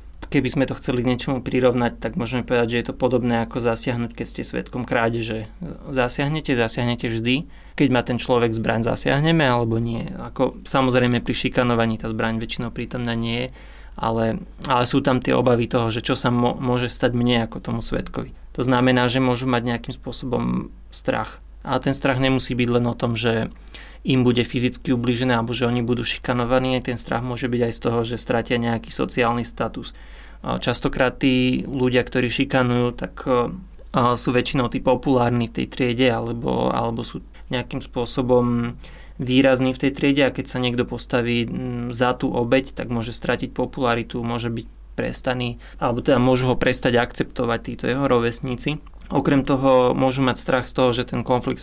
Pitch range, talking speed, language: 120-130 Hz, 175 wpm, Slovak